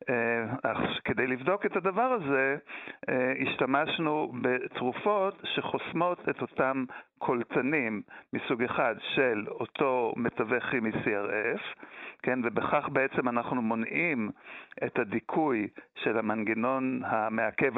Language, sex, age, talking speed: Hebrew, male, 60-79, 100 wpm